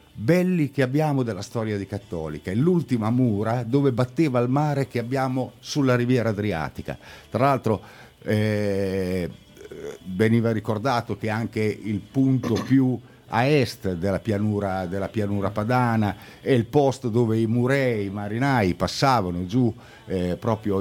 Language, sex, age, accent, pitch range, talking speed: Italian, male, 50-69, native, 95-125 Hz, 135 wpm